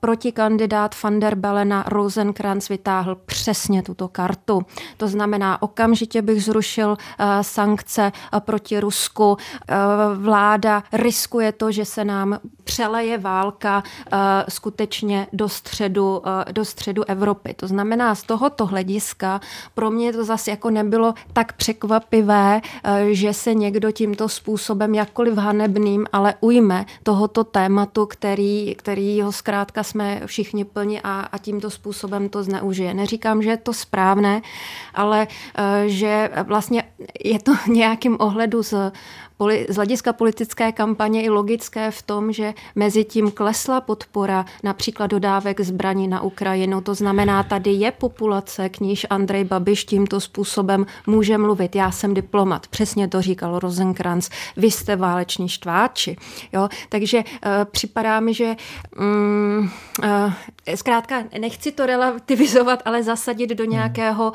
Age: 30-49